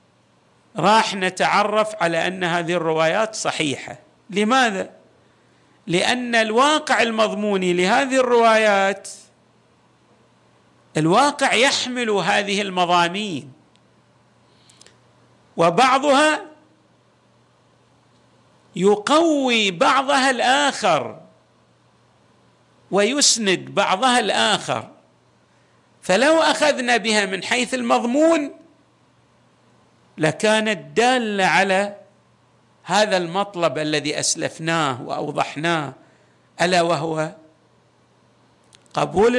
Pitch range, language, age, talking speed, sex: 180-245 Hz, Arabic, 50-69, 60 wpm, male